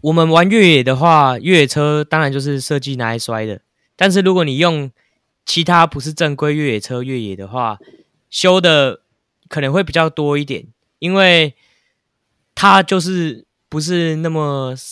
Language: Chinese